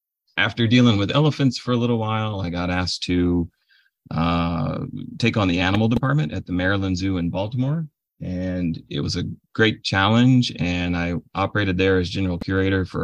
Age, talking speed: 30-49, 175 wpm